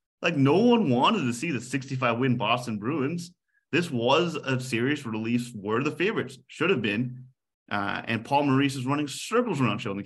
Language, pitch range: English, 110-135 Hz